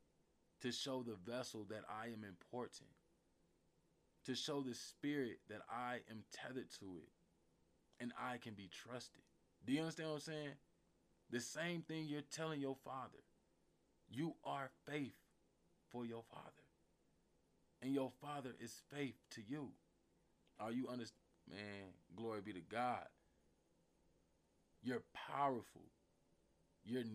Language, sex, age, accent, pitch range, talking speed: English, male, 20-39, American, 110-135 Hz, 135 wpm